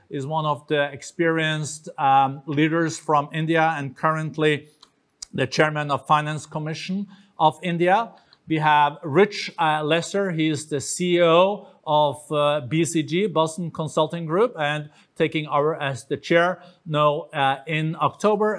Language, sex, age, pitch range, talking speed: English, male, 50-69, 140-170 Hz, 140 wpm